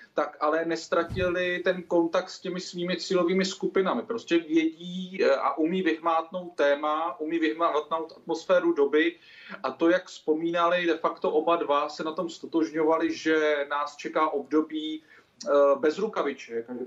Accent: native